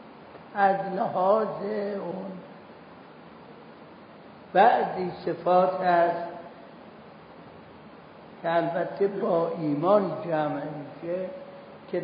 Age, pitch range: 60-79, 170-200 Hz